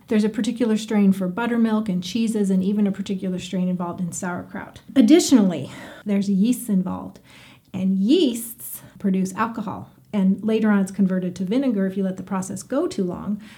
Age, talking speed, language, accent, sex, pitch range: 40-59, 170 wpm, English, American, female, 190-240 Hz